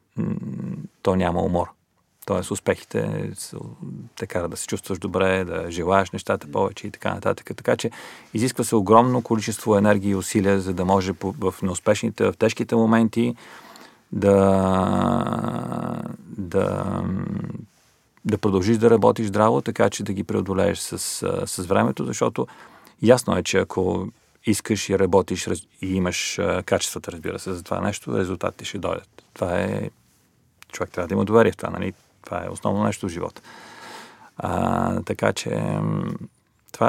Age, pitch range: 40-59, 95-110 Hz